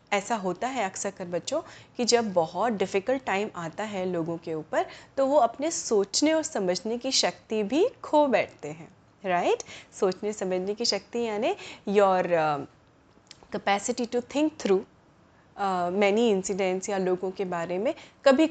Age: 30-49